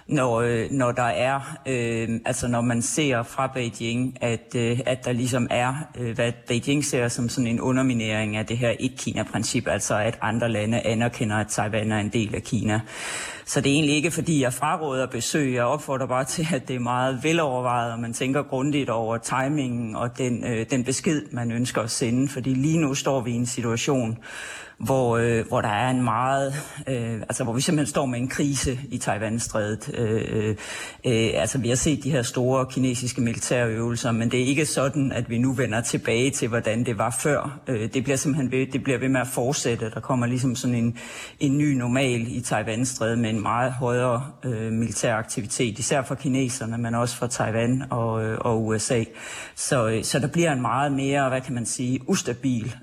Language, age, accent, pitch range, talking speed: Danish, 30-49, native, 115-135 Hz, 205 wpm